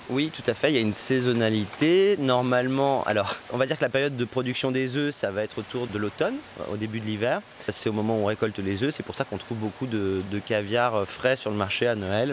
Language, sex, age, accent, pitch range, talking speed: French, male, 30-49, French, 105-130 Hz, 265 wpm